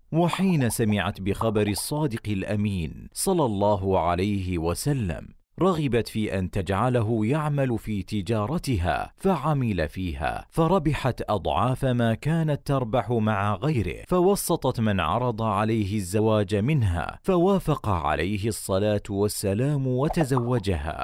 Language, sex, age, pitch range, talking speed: Arabic, male, 40-59, 100-135 Hz, 105 wpm